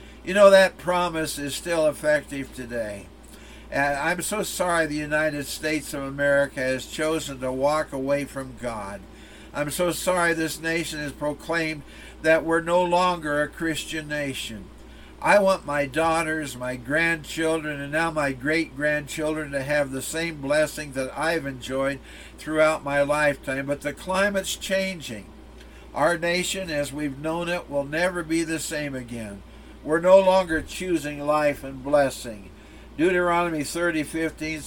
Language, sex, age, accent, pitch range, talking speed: English, male, 60-79, American, 140-165 Hz, 145 wpm